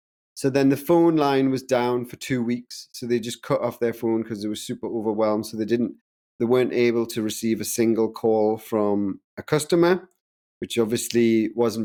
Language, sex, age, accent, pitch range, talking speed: English, male, 30-49, British, 105-135 Hz, 195 wpm